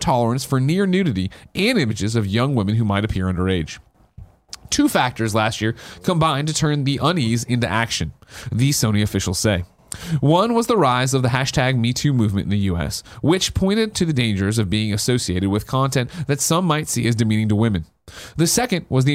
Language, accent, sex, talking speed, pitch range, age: English, American, male, 190 wpm, 110-150 Hz, 30-49